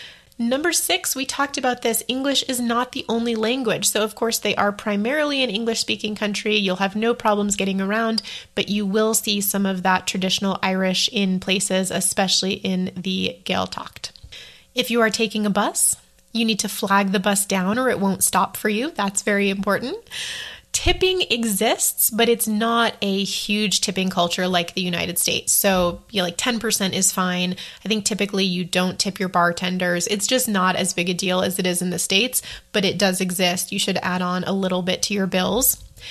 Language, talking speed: English, 195 wpm